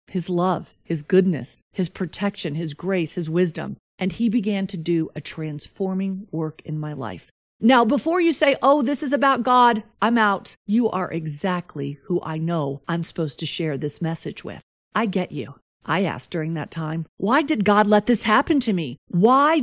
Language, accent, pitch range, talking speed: English, American, 170-245 Hz, 190 wpm